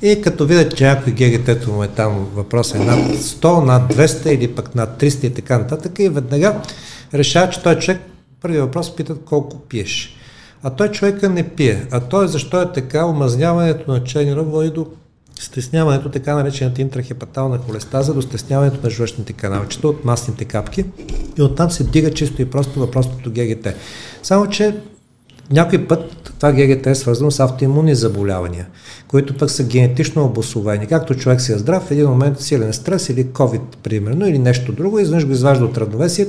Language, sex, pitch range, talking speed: Bulgarian, male, 120-150 Hz, 185 wpm